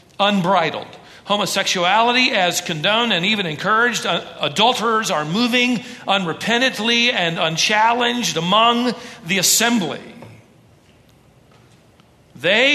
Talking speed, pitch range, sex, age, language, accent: 85 wpm, 155-225 Hz, male, 40-59, English, American